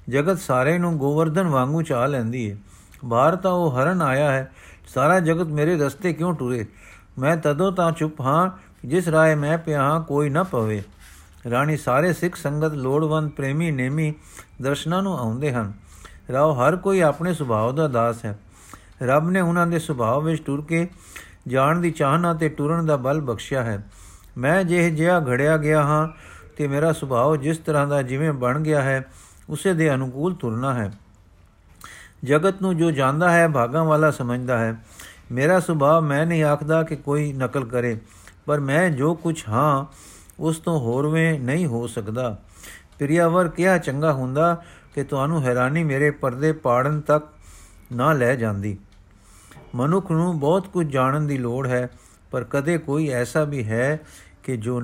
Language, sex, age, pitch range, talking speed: Punjabi, male, 50-69, 120-160 Hz, 165 wpm